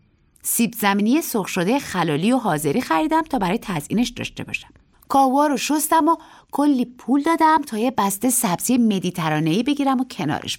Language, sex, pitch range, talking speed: Persian, female, 175-270 Hz, 140 wpm